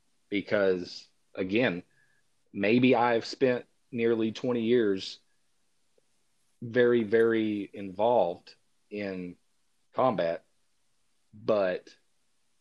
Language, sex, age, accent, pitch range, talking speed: English, male, 30-49, American, 100-125 Hz, 65 wpm